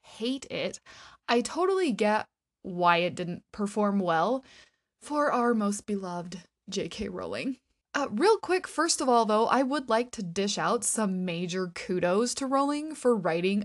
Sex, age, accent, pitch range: female, 20-39, American, 180-250 Hz